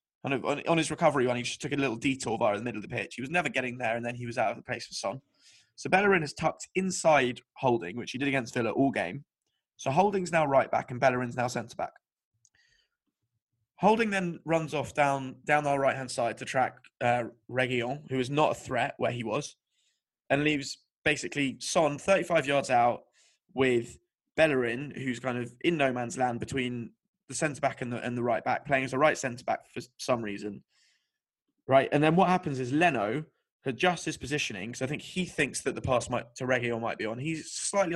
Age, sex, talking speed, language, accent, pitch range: 20-39, male, 205 wpm, English, British, 120-150 Hz